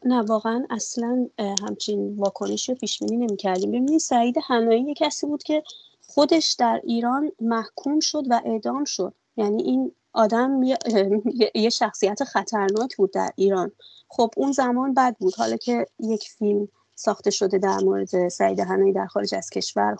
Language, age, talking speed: Persian, 30-49, 155 wpm